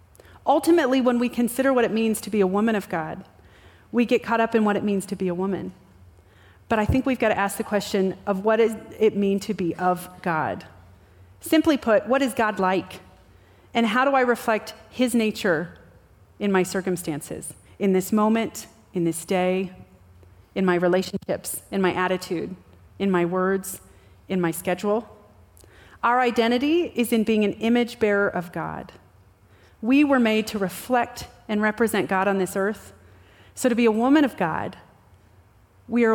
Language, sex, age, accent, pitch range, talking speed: English, female, 30-49, American, 170-230 Hz, 180 wpm